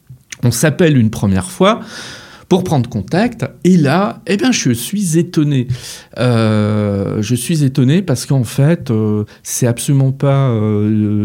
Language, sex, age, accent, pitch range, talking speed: French, male, 40-59, French, 110-155 Hz, 145 wpm